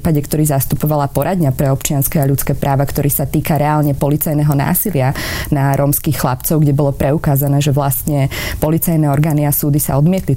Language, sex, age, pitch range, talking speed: Slovak, female, 20-39, 145-170 Hz, 160 wpm